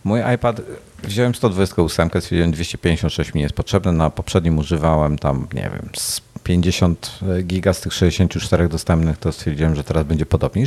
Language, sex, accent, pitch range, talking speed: Polish, male, native, 80-110 Hz, 170 wpm